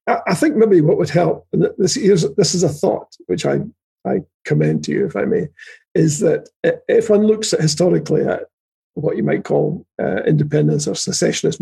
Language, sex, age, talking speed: English, male, 50-69, 190 wpm